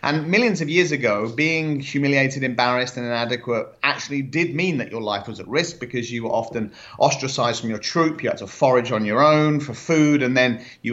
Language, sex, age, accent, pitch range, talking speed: English, male, 30-49, British, 115-155 Hz, 215 wpm